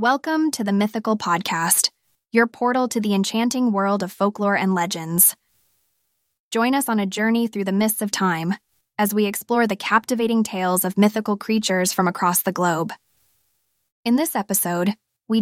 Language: English